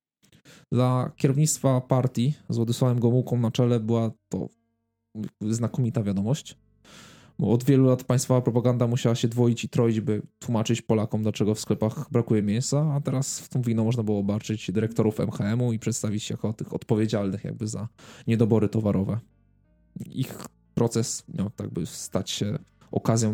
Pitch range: 110-130 Hz